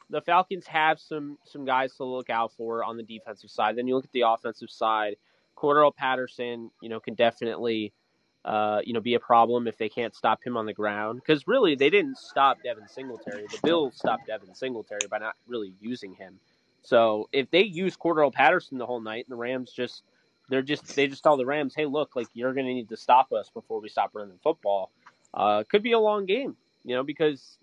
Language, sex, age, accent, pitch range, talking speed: English, male, 30-49, American, 115-145 Hz, 225 wpm